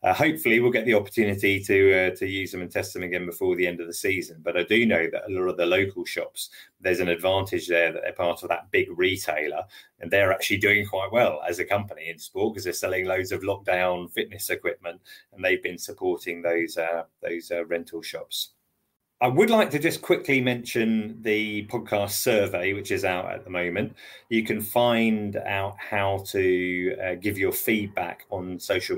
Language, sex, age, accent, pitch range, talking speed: English, male, 30-49, British, 90-130 Hz, 205 wpm